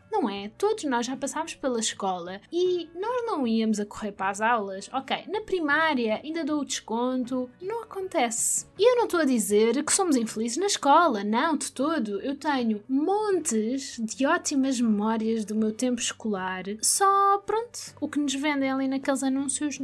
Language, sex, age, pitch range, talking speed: Portuguese, female, 20-39, 225-290 Hz, 180 wpm